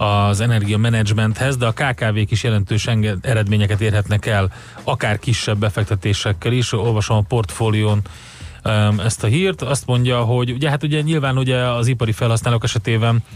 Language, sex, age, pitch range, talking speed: Hungarian, male, 30-49, 105-120 Hz, 150 wpm